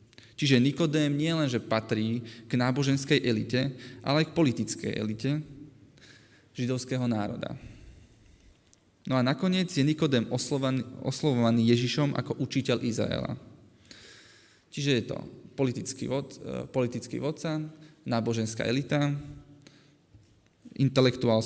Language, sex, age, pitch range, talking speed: Slovak, male, 20-39, 115-145 Hz, 95 wpm